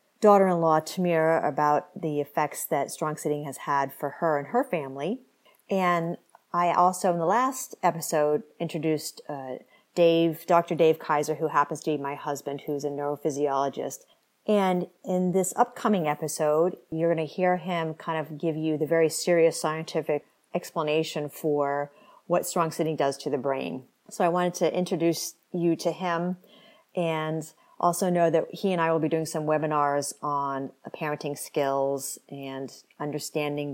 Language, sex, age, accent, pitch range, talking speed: English, female, 40-59, American, 150-180 Hz, 160 wpm